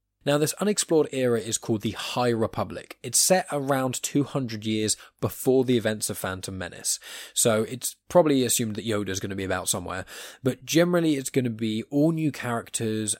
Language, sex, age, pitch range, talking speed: English, male, 10-29, 100-130 Hz, 185 wpm